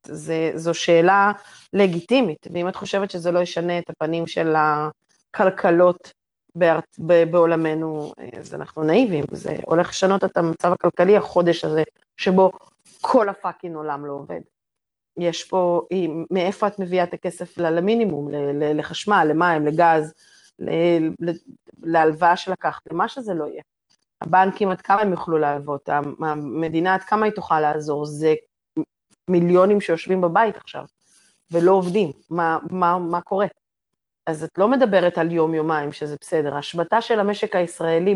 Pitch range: 165-195 Hz